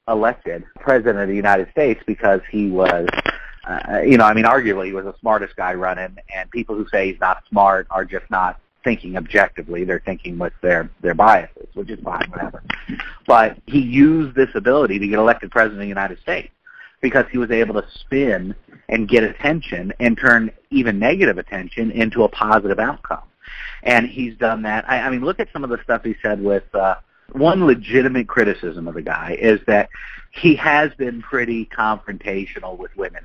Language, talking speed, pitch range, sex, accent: English, 190 wpm, 95-120 Hz, male, American